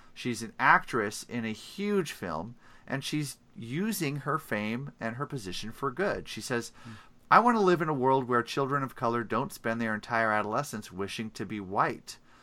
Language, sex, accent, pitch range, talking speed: English, male, American, 100-130 Hz, 190 wpm